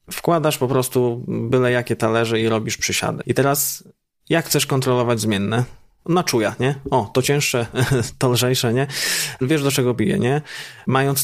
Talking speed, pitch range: 160 wpm, 115-135 Hz